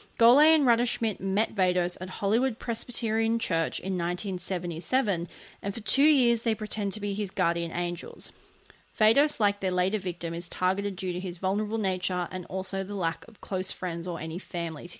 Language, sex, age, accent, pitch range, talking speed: English, female, 30-49, Australian, 185-225 Hz, 180 wpm